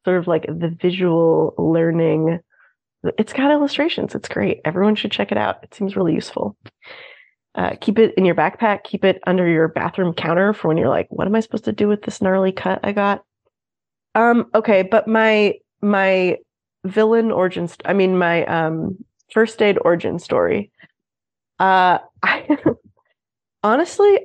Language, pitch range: English, 165-215 Hz